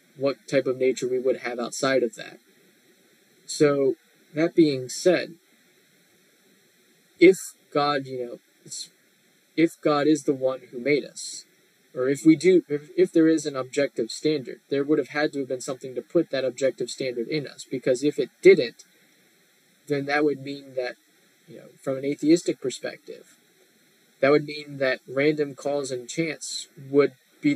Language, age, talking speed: English, 20-39, 170 wpm